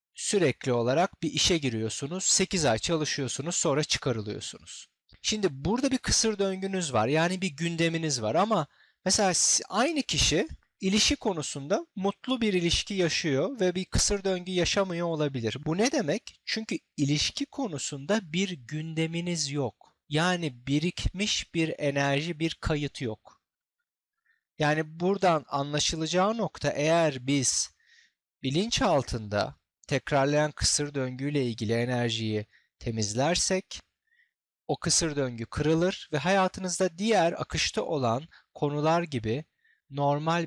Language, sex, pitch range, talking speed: Turkish, male, 140-185 Hz, 115 wpm